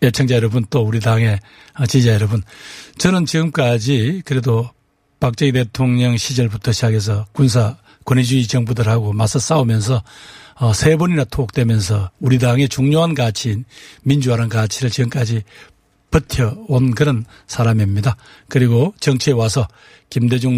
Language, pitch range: Korean, 115-145 Hz